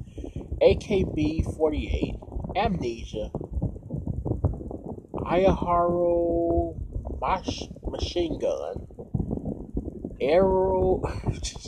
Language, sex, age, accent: English, male, 30-49, American